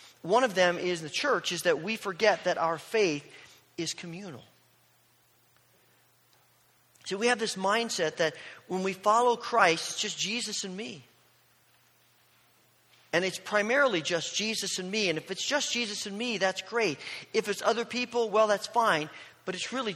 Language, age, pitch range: English, 40-59, 160-215 Hz